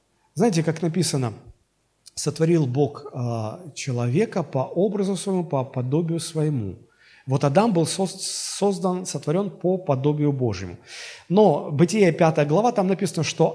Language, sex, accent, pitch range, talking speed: Russian, male, native, 150-220 Hz, 125 wpm